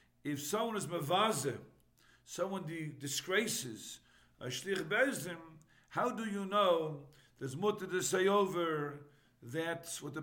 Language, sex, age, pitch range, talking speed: English, male, 50-69, 145-195 Hz, 125 wpm